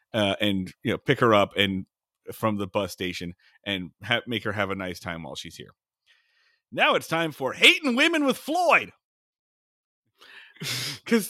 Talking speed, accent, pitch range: 165 wpm, American, 140-220 Hz